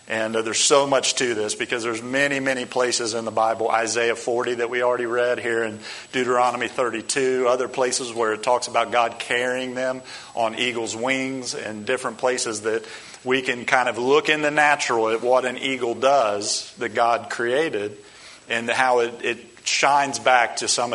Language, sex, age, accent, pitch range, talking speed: English, male, 40-59, American, 115-135 Hz, 185 wpm